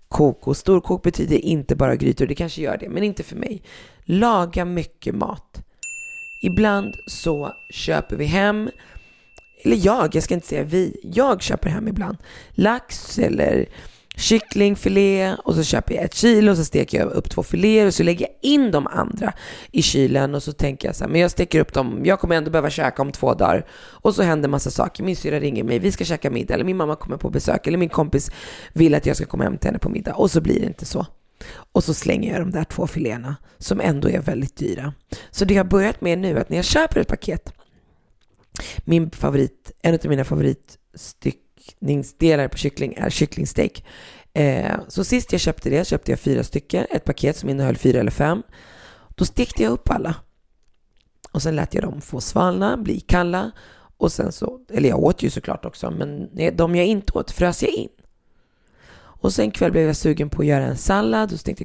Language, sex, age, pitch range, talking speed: Swedish, female, 20-39, 145-195 Hz, 210 wpm